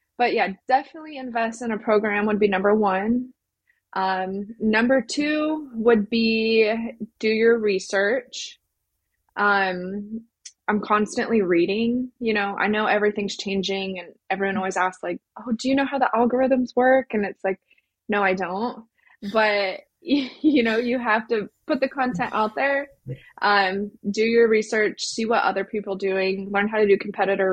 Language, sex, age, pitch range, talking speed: English, female, 20-39, 195-245 Hz, 160 wpm